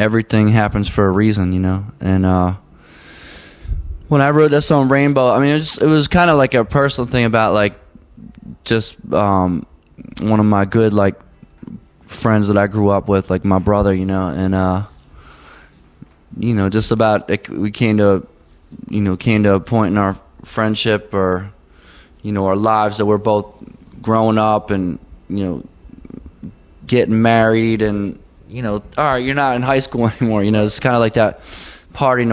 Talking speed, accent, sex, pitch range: 185 wpm, American, male, 100-115 Hz